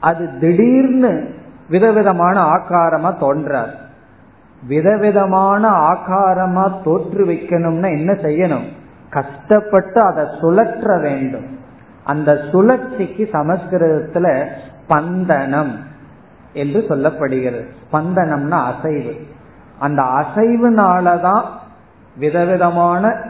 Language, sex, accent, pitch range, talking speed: Tamil, male, native, 135-190 Hz, 65 wpm